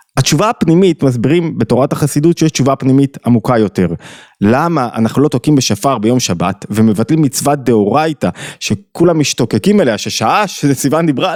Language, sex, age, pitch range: Hebrew, male, 20-39, 120-170 Hz